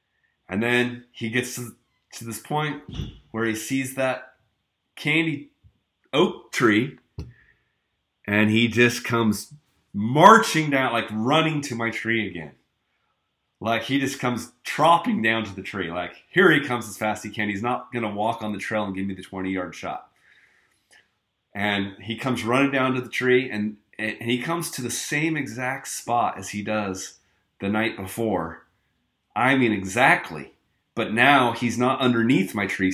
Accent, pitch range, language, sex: American, 95-125 Hz, English, male